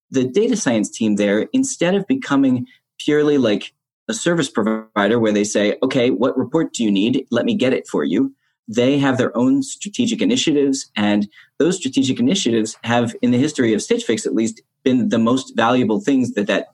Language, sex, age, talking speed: English, male, 30-49, 195 wpm